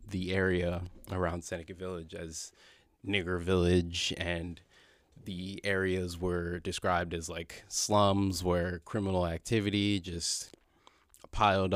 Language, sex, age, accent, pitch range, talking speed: English, male, 20-39, American, 90-100 Hz, 105 wpm